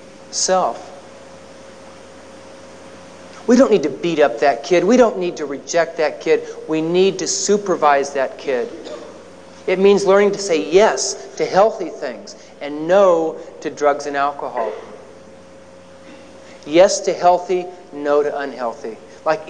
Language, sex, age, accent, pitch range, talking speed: English, male, 40-59, American, 135-190 Hz, 135 wpm